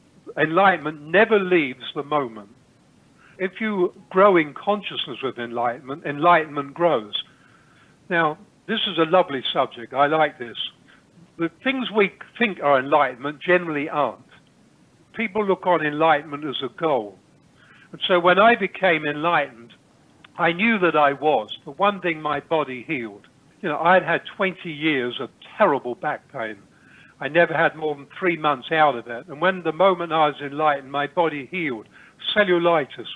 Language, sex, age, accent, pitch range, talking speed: English, male, 60-79, British, 140-180 Hz, 155 wpm